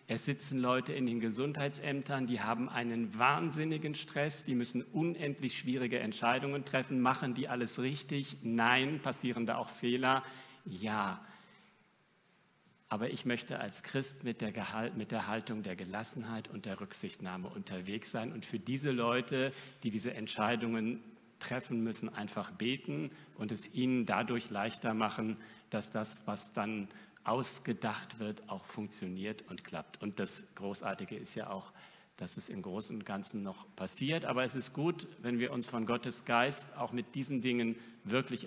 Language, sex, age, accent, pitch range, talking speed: German, male, 50-69, German, 110-135 Hz, 160 wpm